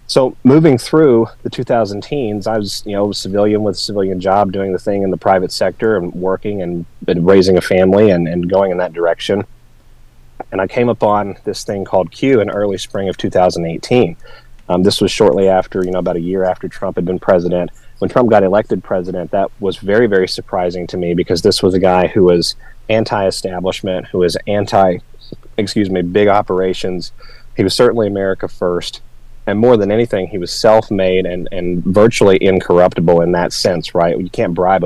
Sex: male